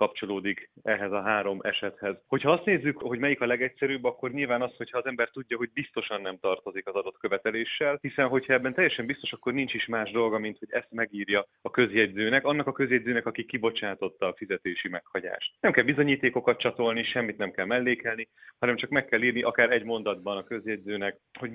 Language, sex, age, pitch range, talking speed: Hungarian, male, 30-49, 110-135 Hz, 190 wpm